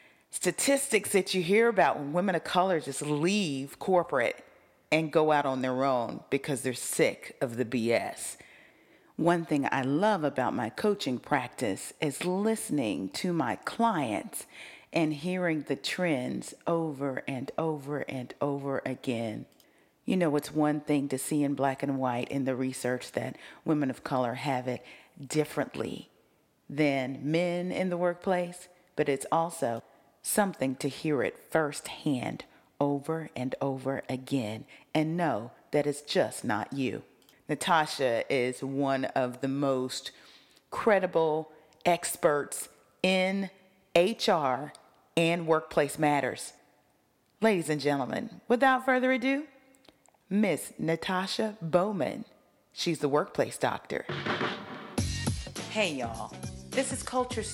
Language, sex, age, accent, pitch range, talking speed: English, female, 40-59, American, 135-180 Hz, 130 wpm